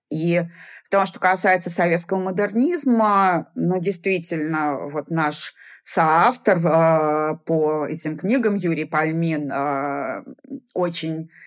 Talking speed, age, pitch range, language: 95 wpm, 30-49, 160-190 Hz, Russian